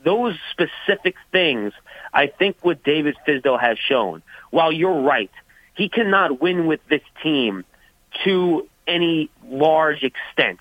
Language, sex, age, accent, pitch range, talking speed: English, male, 30-49, American, 140-180 Hz, 130 wpm